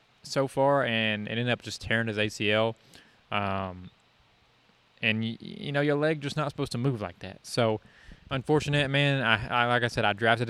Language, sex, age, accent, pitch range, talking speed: English, male, 20-39, American, 110-125 Hz, 195 wpm